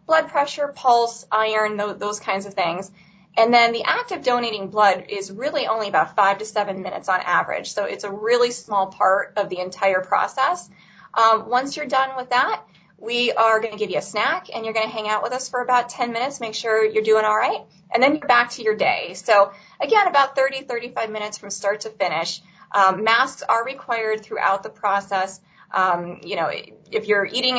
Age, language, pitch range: 20-39, English, 190-240 Hz